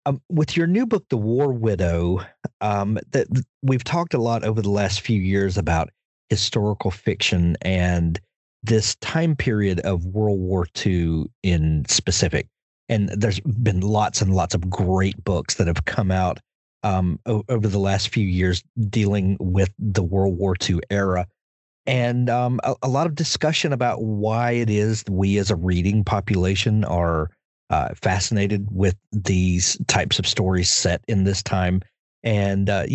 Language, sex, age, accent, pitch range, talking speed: English, male, 40-59, American, 95-120 Hz, 160 wpm